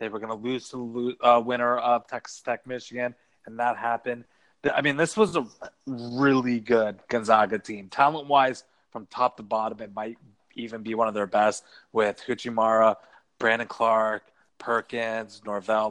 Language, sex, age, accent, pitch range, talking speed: English, male, 30-49, American, 115-135 Hz, 160 wpm